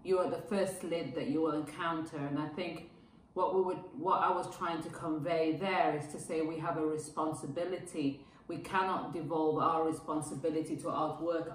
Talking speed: 180 wpm